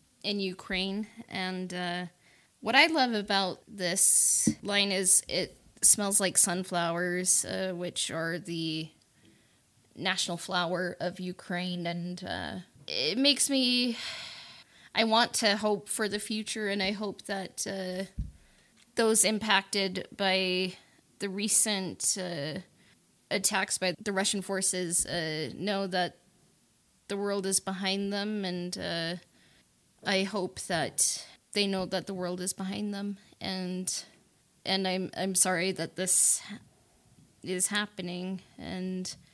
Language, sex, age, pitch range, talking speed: English, female, 20-39, 180-205 Hz, 125 wpm